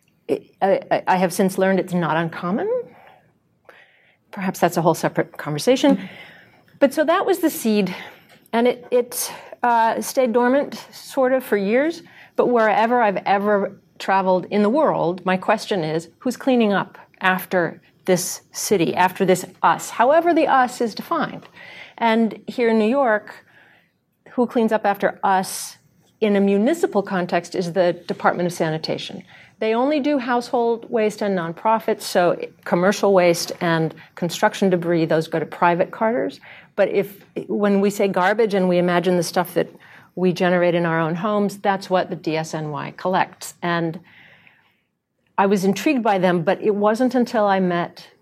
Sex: female